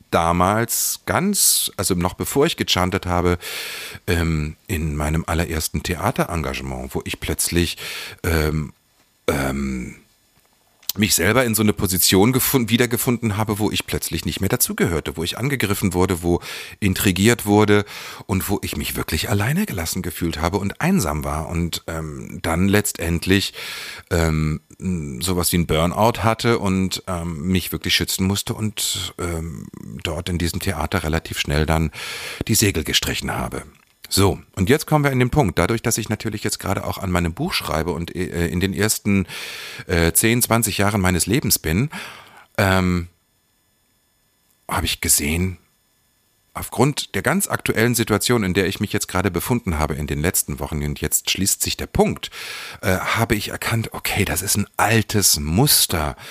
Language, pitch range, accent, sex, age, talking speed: German, 85-110 Hz, German, male, 40-59, 160 wpm